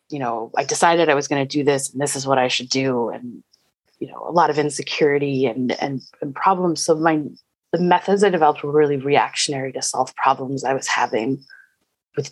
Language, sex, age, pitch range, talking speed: English, female, 30-49, 135-155 Hz, 215 wpm